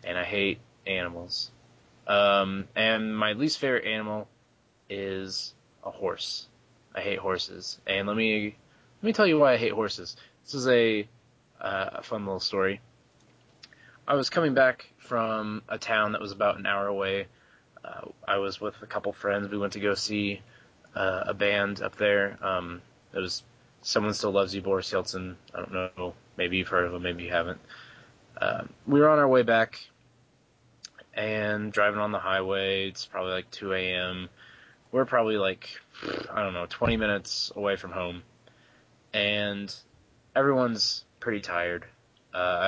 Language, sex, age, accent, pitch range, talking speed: English, male, 20-39, American, 95-120 Hz, 165 wpm